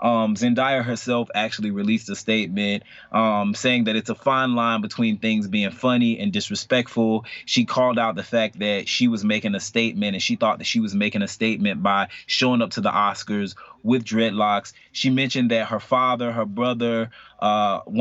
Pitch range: 105-125 Hz